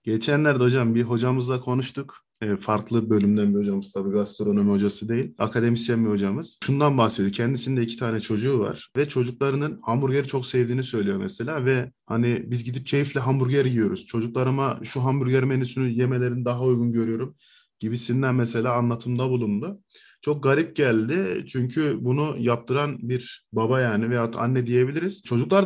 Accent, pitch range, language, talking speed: native, 120-160 Hz, Turkish, 145 wpm